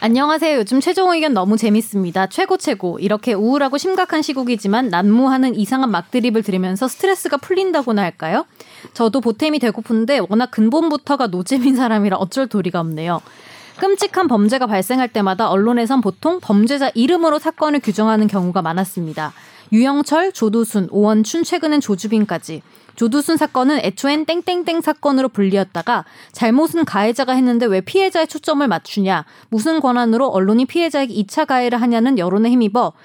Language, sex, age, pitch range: Korean, female, 20-39, 205-295 Hz